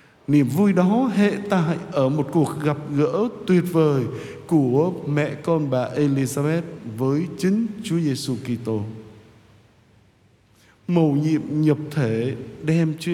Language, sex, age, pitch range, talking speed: Vietnamese, male, 60-79, 120-170 Hz, 130 wpm